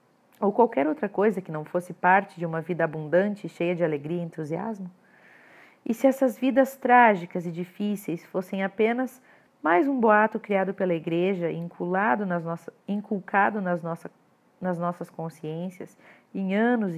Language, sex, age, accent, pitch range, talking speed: Portuguese, female, 40-59, Brazilian, 165-225 Hz, 140 wpm